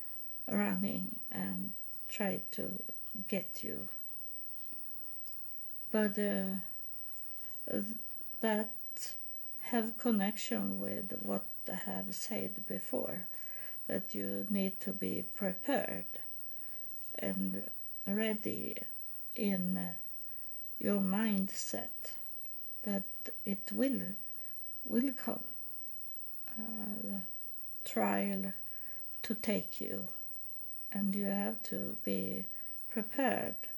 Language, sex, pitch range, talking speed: English, female, 195-230 Hz, 80 wpm